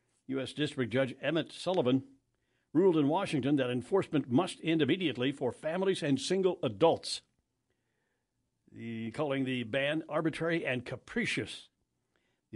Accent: American